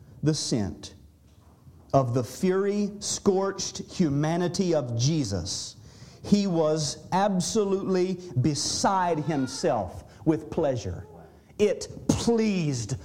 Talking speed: 80 wpm